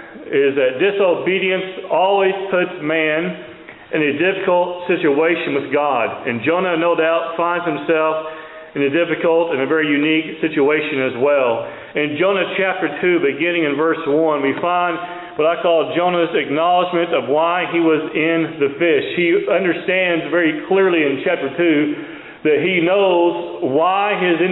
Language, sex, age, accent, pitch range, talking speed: English, male, 40-59, American, 160-185 Hz, 155 wpm